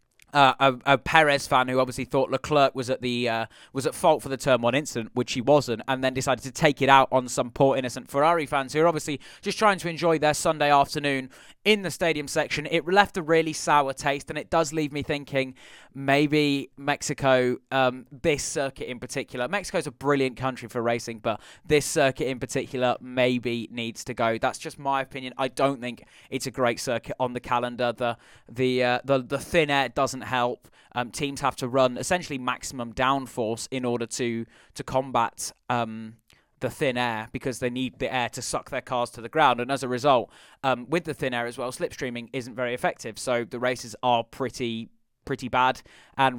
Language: English